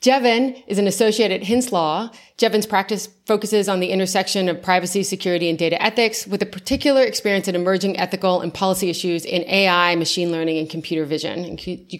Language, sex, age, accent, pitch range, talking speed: English, female, 30-49, American, 175-215 Hz, 185 wpm